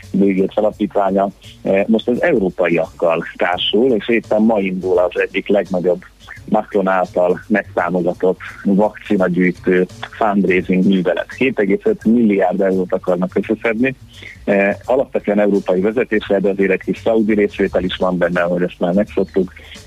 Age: 30-49